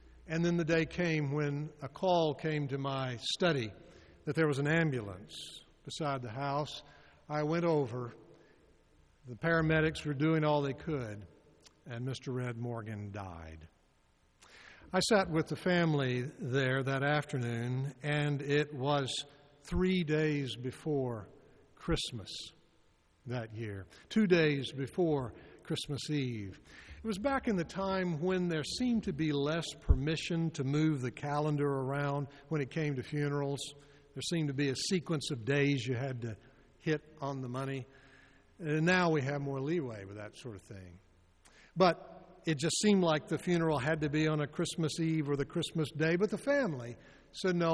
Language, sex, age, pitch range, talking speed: English, male, 60-79, 130-165 Hz, 160 wpm